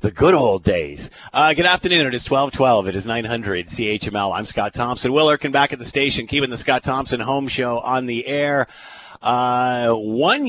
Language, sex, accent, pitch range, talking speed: English, male, American, 95-145 Hz, 195 wpm